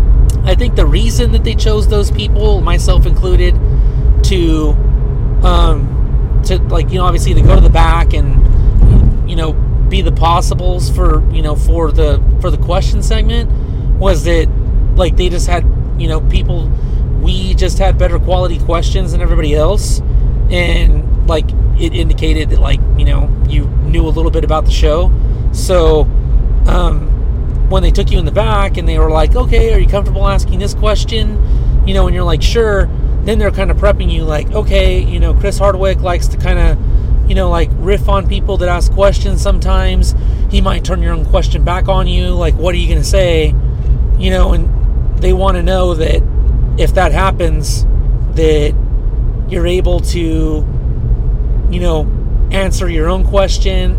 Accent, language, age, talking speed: American, English, 30-49, 180 wpm